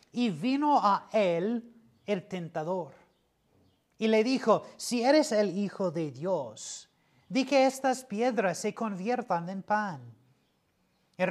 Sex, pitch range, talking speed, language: male, 170-225 Hz, 125 wpm, Spanish